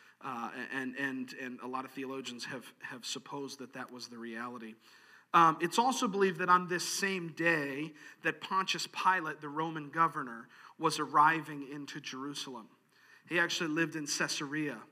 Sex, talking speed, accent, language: male, 160 wpm, American, English